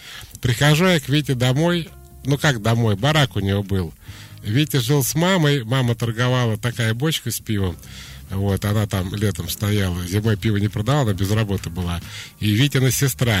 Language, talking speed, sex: Russian, 170 wpm, male